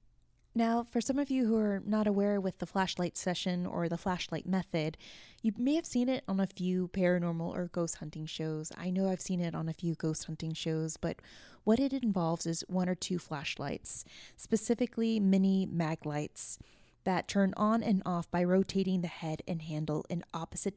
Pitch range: 175-210 Hz